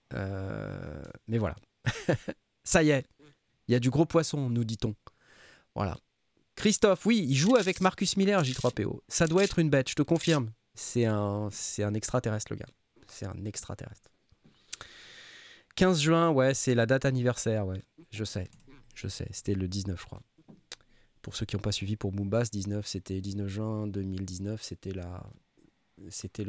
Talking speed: 170 wpm